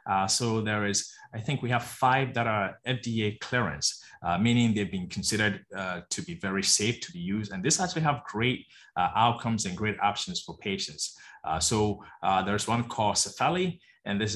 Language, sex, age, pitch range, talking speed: English, male, 20-39, 100-125 Hz, 195 wpm